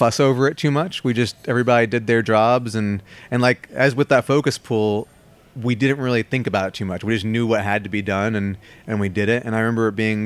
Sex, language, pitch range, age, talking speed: male, English, 100-115 Hz, 30-49, 265 wpm